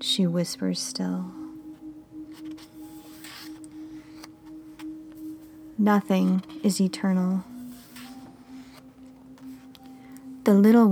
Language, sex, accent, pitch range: English, female, American, 180-260 Hz